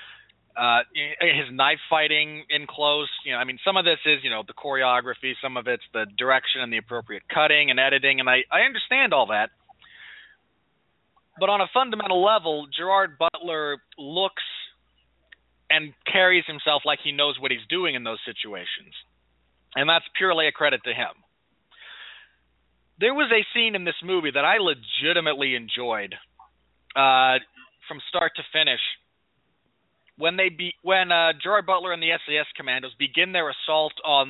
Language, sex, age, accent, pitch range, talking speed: English, male, 30-49, American, 135-165 Hz, 165 wpm